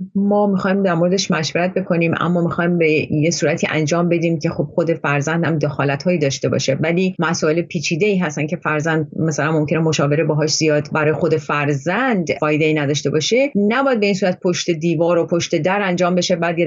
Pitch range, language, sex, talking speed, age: 160-205 Hz, Persian, female, 190 wpm, 30-49